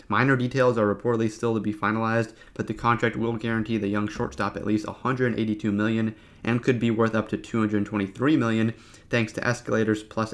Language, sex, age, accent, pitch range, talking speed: English, male, 30-49, American, 105-120 Hz, 185 wpm